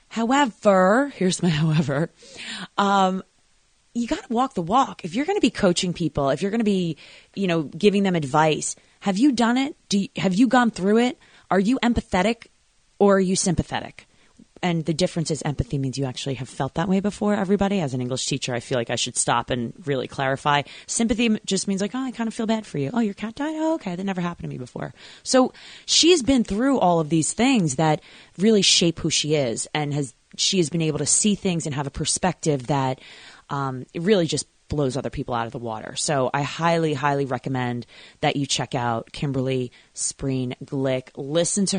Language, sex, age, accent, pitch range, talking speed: English, female, 20-39, American, 140-195 Hz, 215 wpm